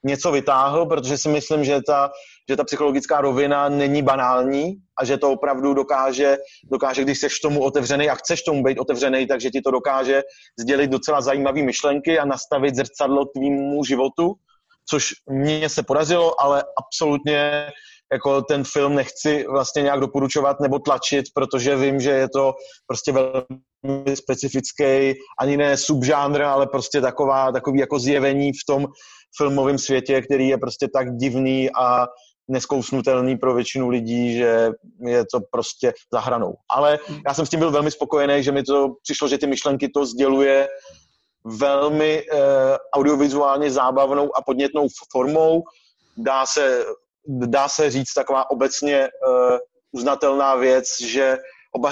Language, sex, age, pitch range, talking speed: Czech, male, 30-49, 135-145 Hz, 145 wpm